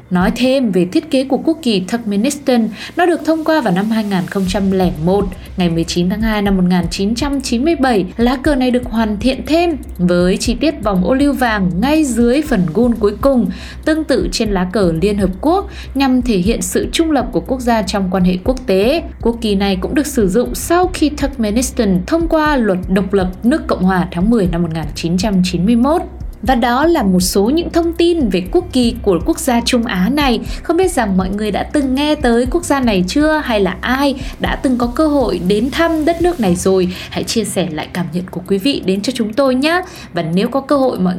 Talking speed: 220 wpm